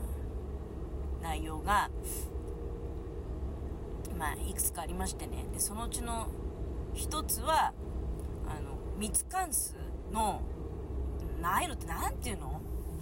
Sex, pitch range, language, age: female, 70-95 Hz, Japanese, 40-59